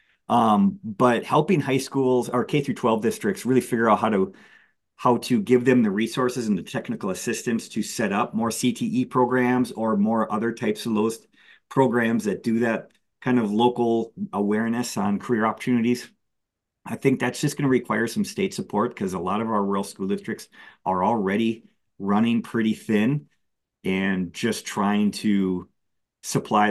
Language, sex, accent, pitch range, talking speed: English, male, American, 105-135 Hz, 165 wpm